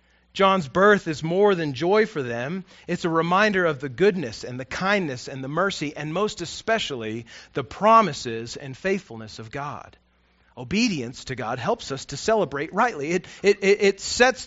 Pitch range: 150-215 Hz